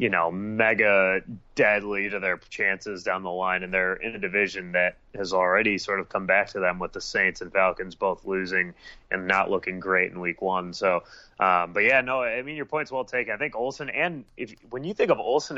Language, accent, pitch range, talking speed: English, American, 95-105 Hz, 225 wpm